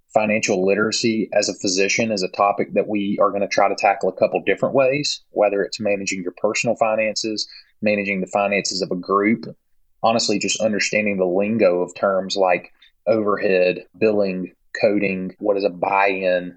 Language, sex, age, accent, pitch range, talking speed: English, male, 20-39, American, 95-115 Hz, 170 wpm